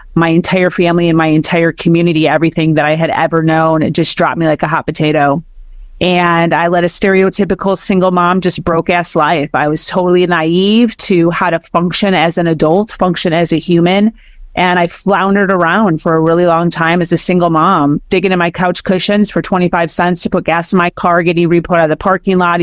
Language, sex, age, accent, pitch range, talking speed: English, female, 30-49, American, 165-190 Hz, 215 wpm